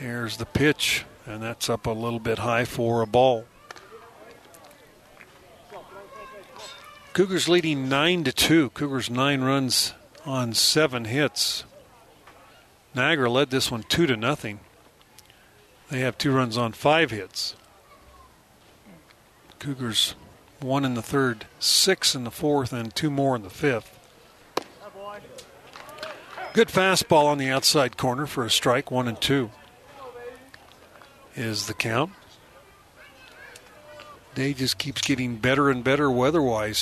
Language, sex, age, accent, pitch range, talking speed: English, male, 40-59, American, 115-145 Hz, 120 wpm